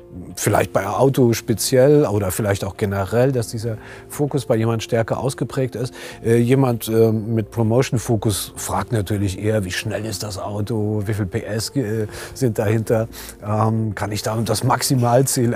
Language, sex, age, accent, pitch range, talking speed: German, male, 40-59, German, 110-130 Hz, 145 wpm